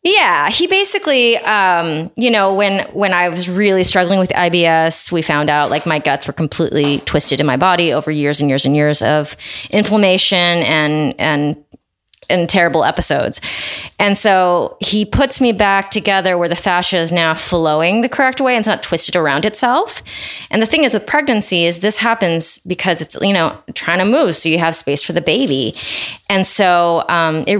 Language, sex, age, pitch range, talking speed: English, female, 30-49, 160-205 Hz, 190 wpm